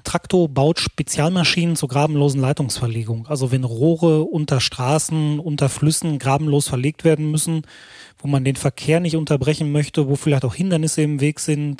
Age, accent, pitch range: 30-49, German, 140-160 Hz